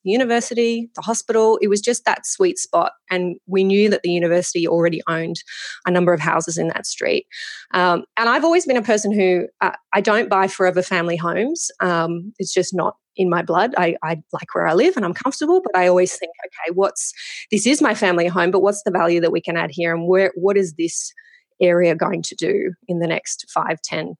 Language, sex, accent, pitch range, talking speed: English, female, Australian, 175-220 Hz, 220 wpm